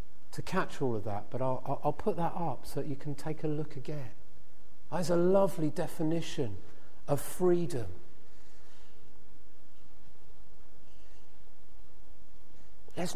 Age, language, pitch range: 40-59, English, 125-170 Hz